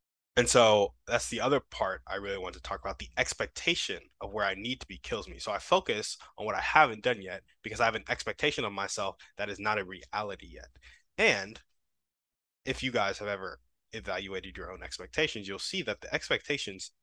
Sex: male